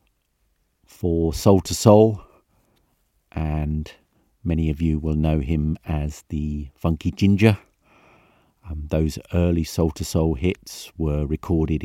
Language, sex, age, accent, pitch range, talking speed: English, male, 50-69, British, 75-90 Hz, 120 wpm